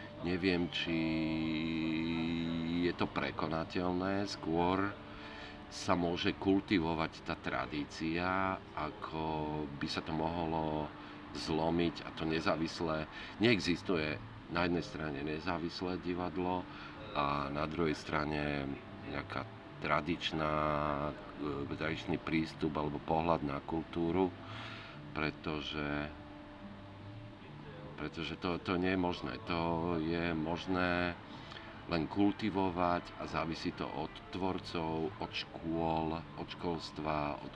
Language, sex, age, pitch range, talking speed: Slovak, male, 50-69, 75-90 Hz, 95 wpm